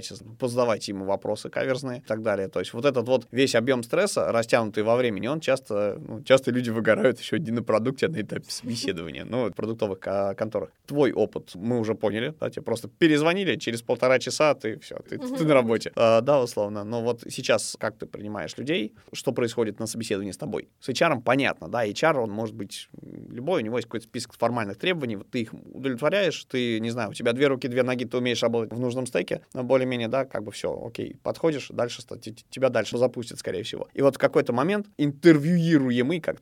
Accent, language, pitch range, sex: native, Russian, 110-135 Hz, male